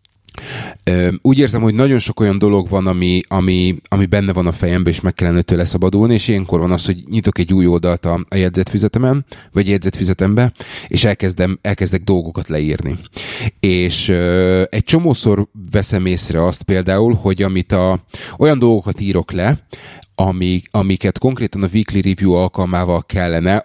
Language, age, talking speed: Hungarian, 30-49, 150 wpm